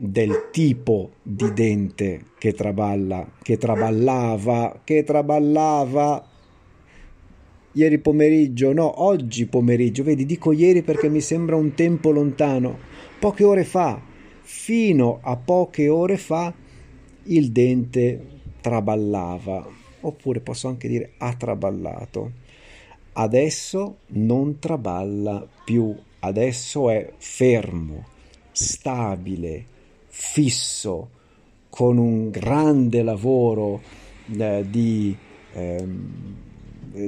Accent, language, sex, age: native, Italian, male, 50-69